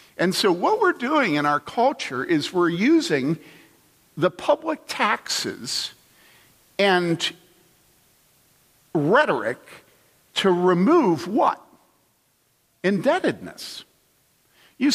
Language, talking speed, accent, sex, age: English, 85 wpm, American, male, 50-69